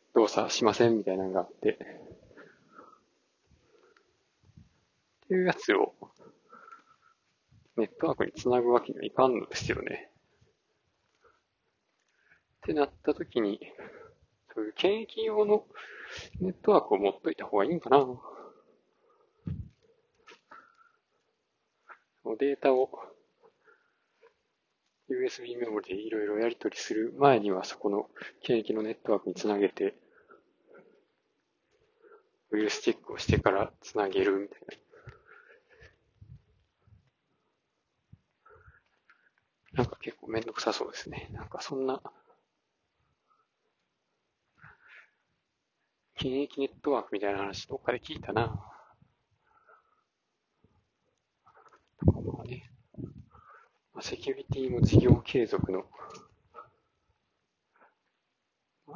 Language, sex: Japanese, male